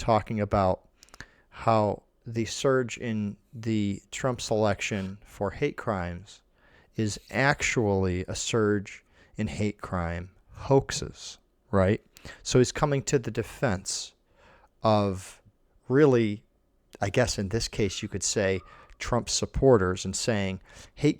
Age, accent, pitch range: 40-59, American, 100-130 Hz